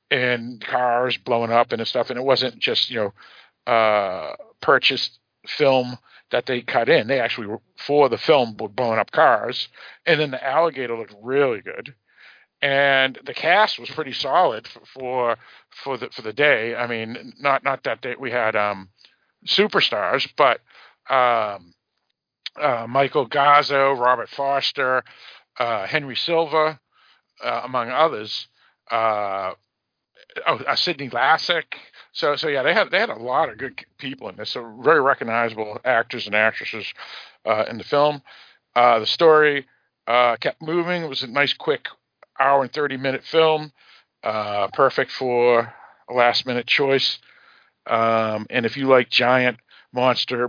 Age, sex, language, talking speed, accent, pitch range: 50-69, male, English, 145 wpm, American, 115-135 Hz